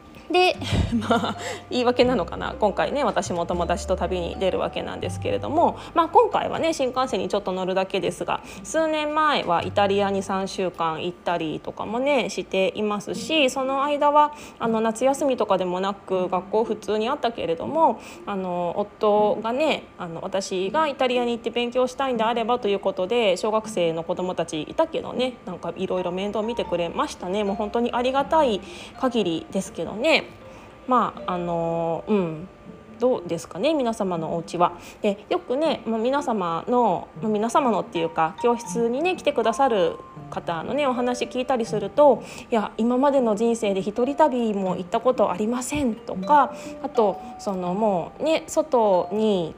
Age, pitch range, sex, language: 20-39, 185-255 Hz, female, Japanese